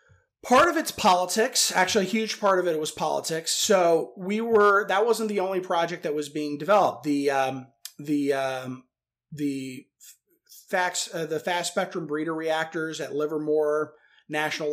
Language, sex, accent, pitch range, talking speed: English, male, American, 145-180 Hz, 165 wpm